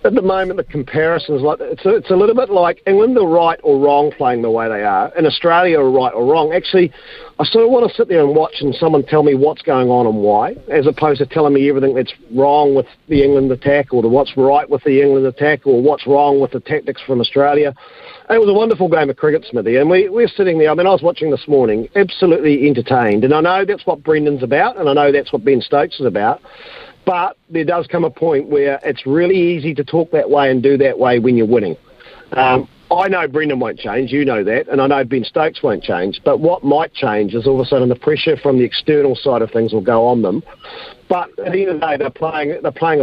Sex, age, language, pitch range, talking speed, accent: male, 40-59, English, 135-170 Hz, 255 wpm, Australian